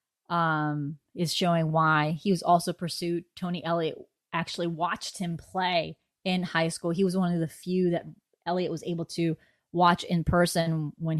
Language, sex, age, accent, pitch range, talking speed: English, female, 20-39, American, 165-190 Hz, 170 wpm